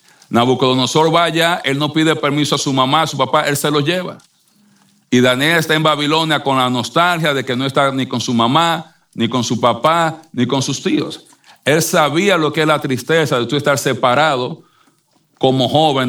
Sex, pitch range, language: male, 135-170 Hz, Spanish